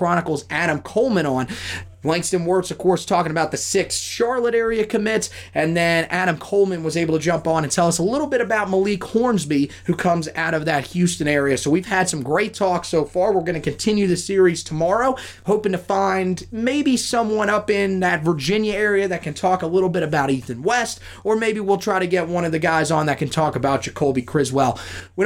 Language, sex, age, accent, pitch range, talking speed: English, male, 30-49, American, 150-190 Hz, 220 wpm